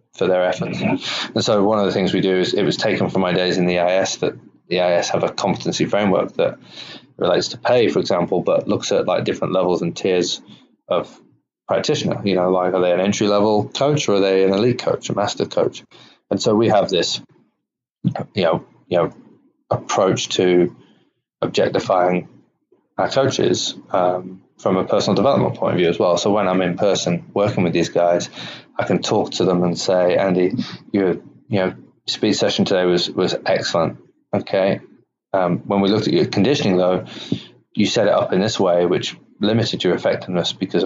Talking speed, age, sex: 195 wpm, 20-39, male